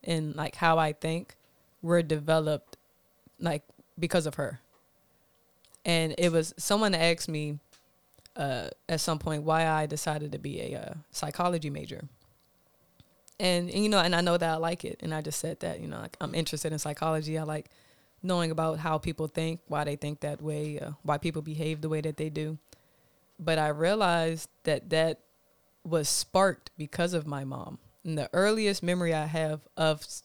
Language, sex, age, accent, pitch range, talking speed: English, female, 20-39, American, 150-170 Hz, 180 wpm